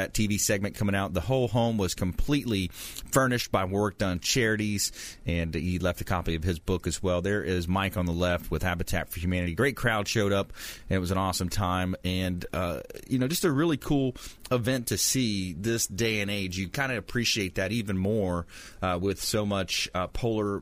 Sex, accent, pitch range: male, American, 90-110 Hz